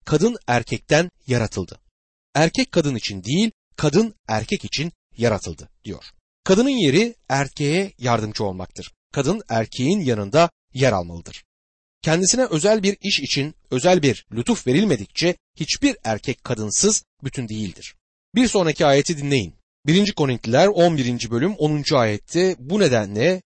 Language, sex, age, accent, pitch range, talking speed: Turkish, male, 40-59, native, 115-180 Hz, 125 wpm